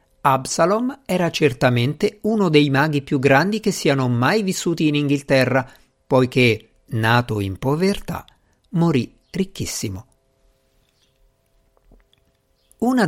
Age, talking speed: 50-69, 95 wpm